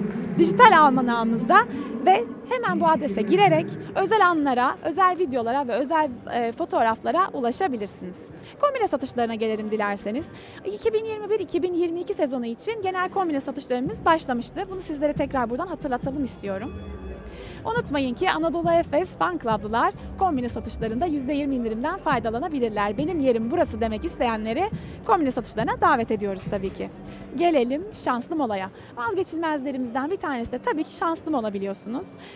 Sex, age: female, 30-49